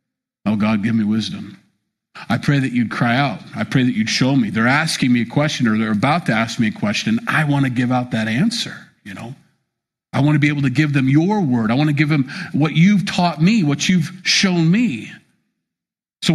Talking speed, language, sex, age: 230 wpm, English, male, 50-69